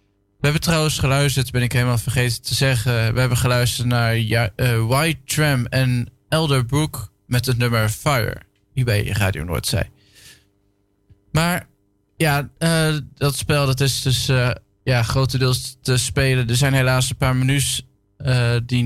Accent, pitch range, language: Dutch, 105-130 Hz, Dutch